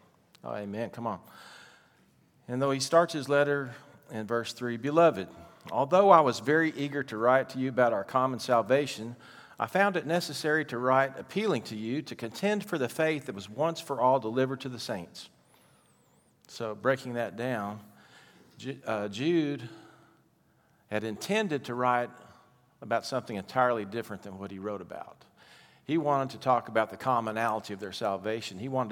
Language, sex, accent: English, male, American